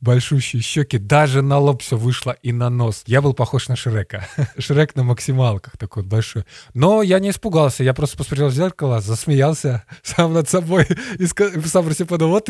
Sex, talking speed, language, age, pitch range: male, 185 wpm, Russian, 20-39, 110-150 Hz